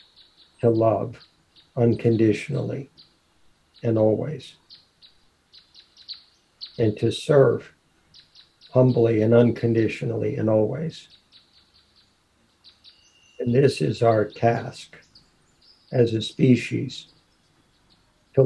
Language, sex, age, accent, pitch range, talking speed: English, male, 60-79, American, 110-125 Hz, 70 wpm